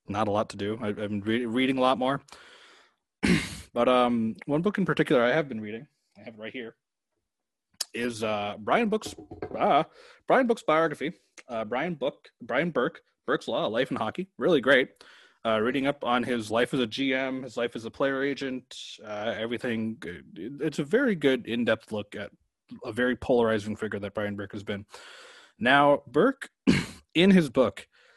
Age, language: 20-39, English